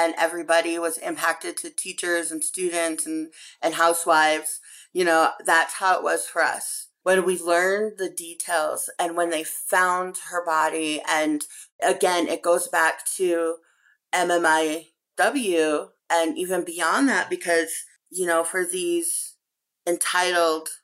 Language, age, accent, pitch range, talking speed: English, 30-49, American, 165-195 Hz, 135 wpm